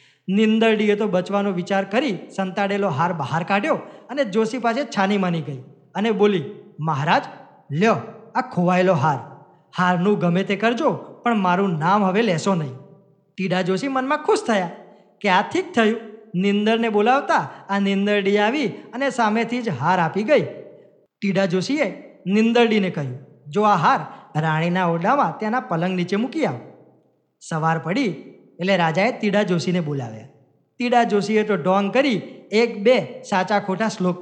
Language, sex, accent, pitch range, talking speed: Gujarati, male, native, 170-230 Hz, 145 wpm